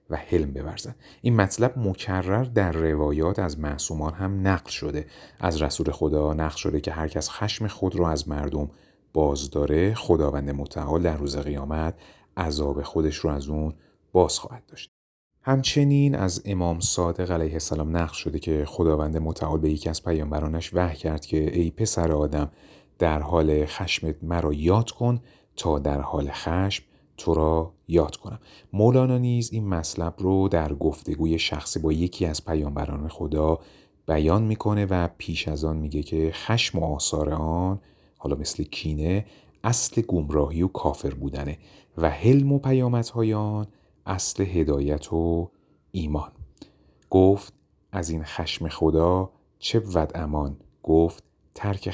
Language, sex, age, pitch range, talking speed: Persian, male, 30-49, 75-95 Hz, 145 wpm